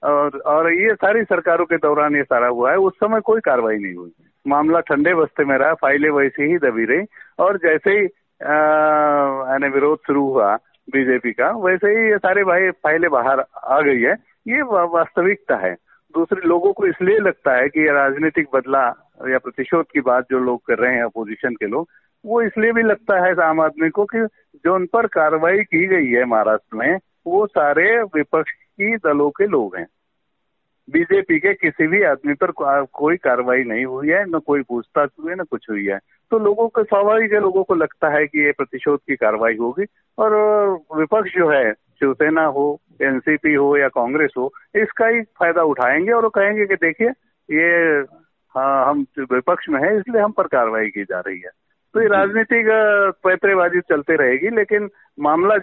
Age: 50-69